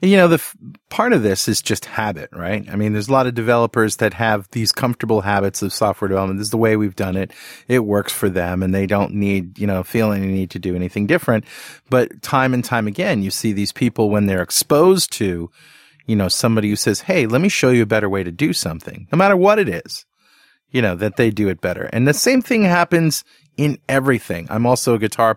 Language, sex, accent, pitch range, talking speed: English, male, American, 100-125 Hz, 240 wpm